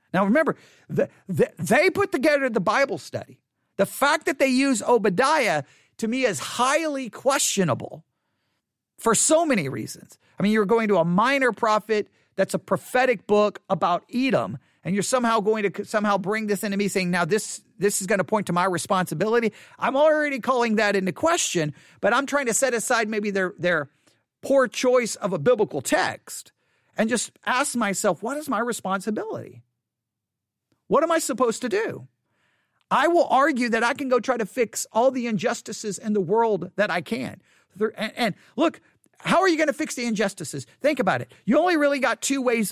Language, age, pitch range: English, 40-59, 195-260 Hz